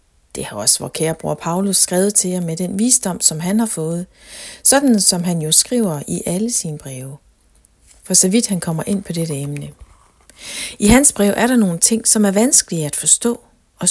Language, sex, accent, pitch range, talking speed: Danish, female, native, 155-215 Hz, 205 wpm